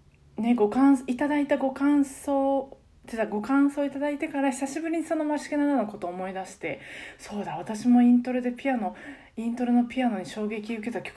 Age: 20-39